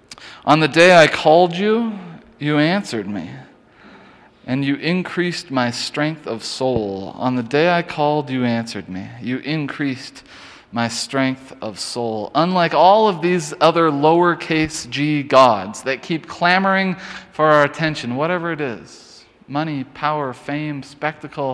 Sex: male